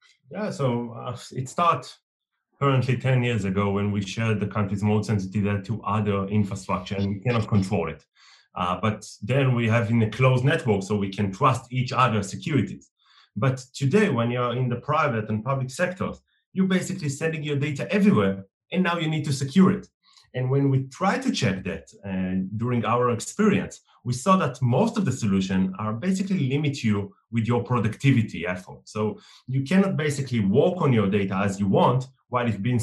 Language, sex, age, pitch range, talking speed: English, male, 30-49, 105-140 Hz, 190 wpm